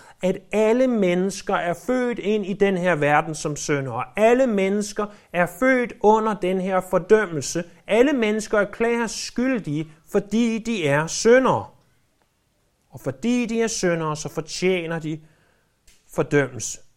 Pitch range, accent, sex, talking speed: 150-215 Hz, native, male, 135 wpm